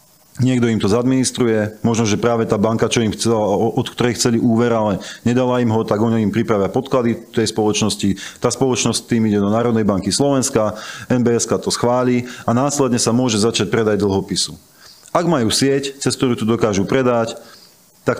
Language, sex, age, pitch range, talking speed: Slovak, male, 40-59, 110-130 Hz, 180 wpm